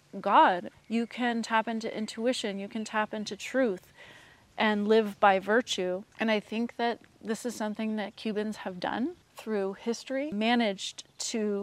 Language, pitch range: English, 195-225 Hz